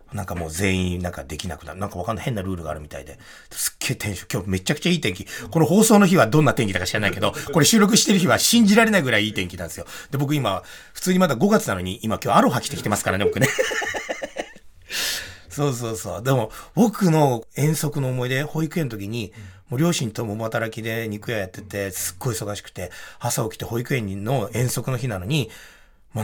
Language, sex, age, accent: Japanese, male, 30-49, native